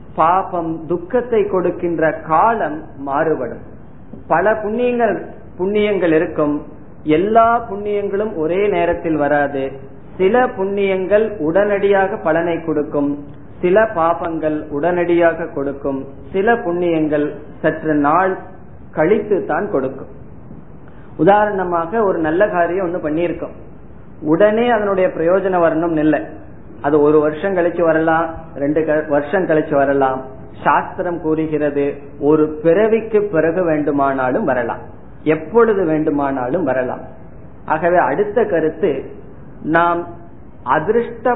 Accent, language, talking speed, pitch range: native, Tamil, 90 wpm, 155-195 Hz